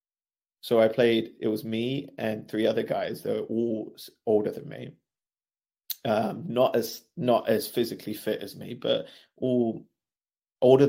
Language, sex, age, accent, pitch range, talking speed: English, male, 30-49, British, 105-120 Hz, 155 wpm